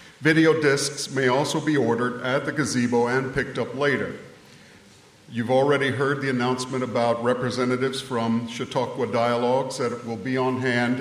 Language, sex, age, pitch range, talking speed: English, male, 50-69, 120-140 Hz, 155 wpm